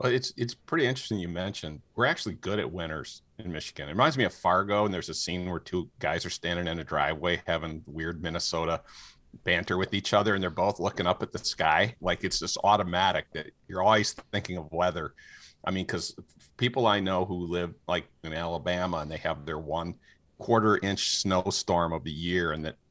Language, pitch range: English, 80-105 Hz